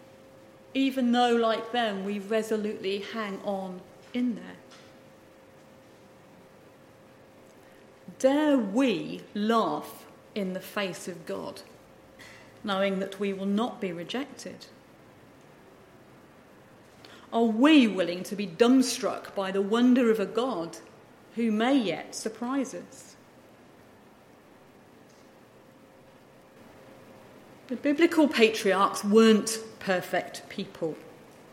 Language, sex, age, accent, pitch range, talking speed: English, female, 40-59, British, 200-255 Hz, 90 wpm